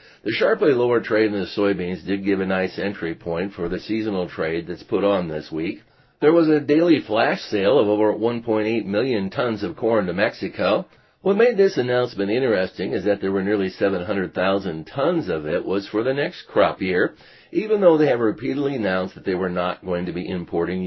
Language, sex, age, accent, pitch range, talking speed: English, male, 50-69, American, 95-115 Hz, 205 wpm